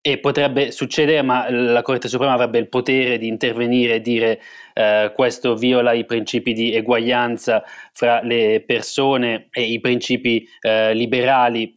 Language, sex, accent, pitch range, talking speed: Italian, male, native, 115-130 Hz, 155 wpm